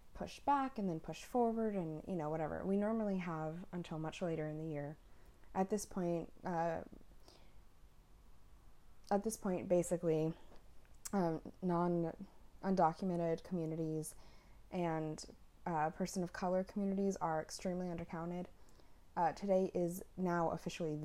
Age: 20-39